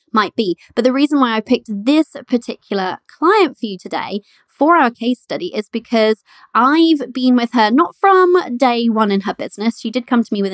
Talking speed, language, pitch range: 210 wpm, English, 200-255 Hz